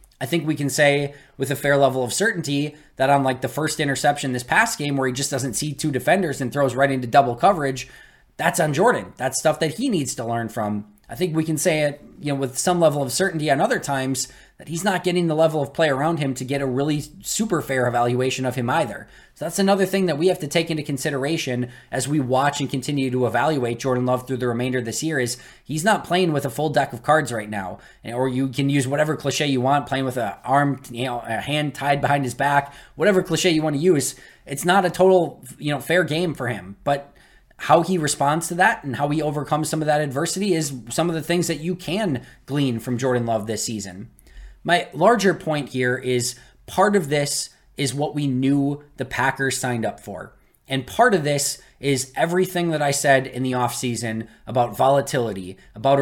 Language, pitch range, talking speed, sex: English, 125-155 Hz, 230 wpm, male